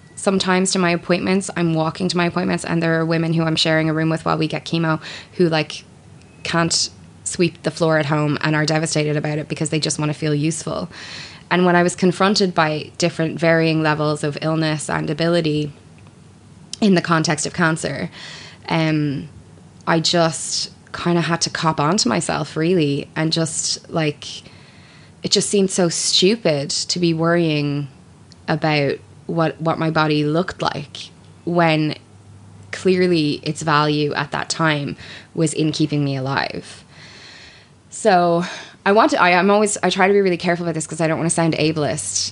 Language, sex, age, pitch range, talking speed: English, female, 20-39, 145-170 Hz, 175 wpm